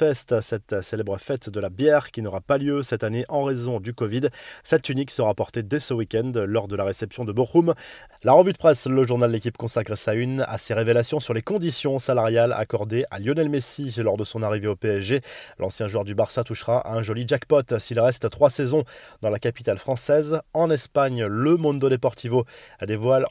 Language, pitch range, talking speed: French, 115-140 Hz, 200 wpm